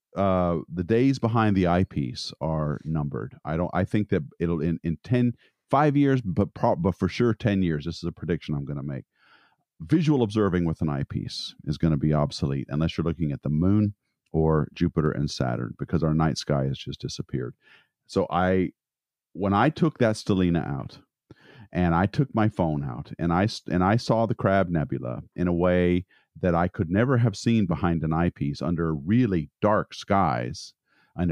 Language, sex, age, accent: English, male, 50-69, American